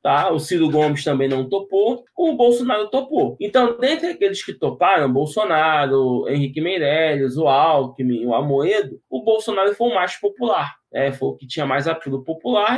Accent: Brazilian